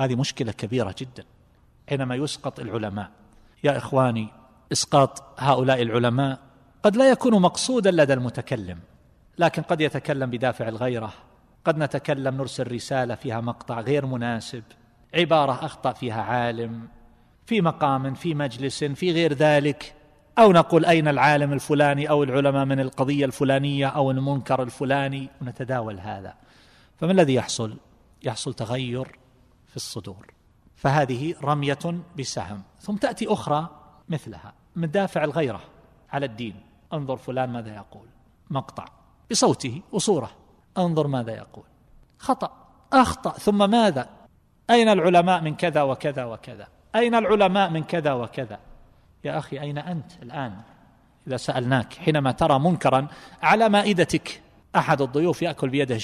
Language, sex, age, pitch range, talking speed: Arabic, male, 40-59, 125-160 Hz, 125 wpm